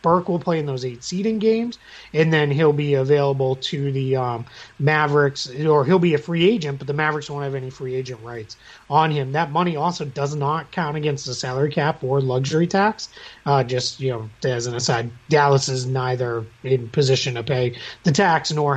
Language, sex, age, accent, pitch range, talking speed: English, male, 30-49, American, 130-170 Hz, 205 wpm